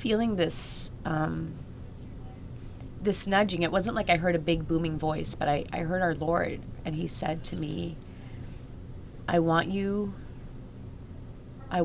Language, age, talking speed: English, 30-49, 145 wpm